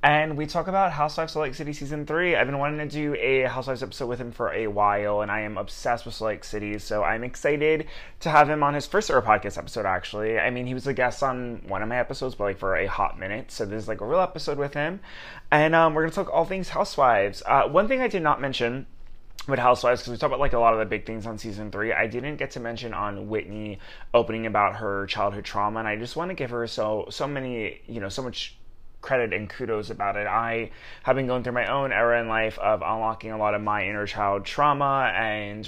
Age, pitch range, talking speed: 20-39, 110-140 Hz, 250 wpm